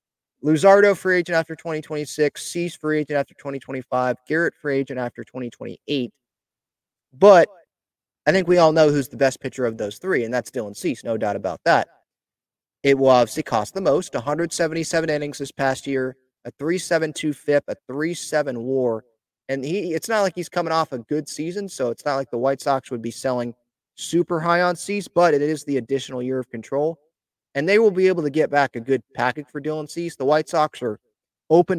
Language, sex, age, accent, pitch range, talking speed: English, male, 30-49, American, 130-165 Hz, 200 wpm